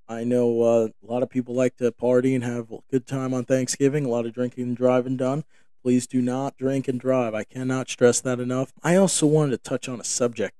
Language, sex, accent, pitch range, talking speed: English, male, American, 120-140 Hz, 245 wpm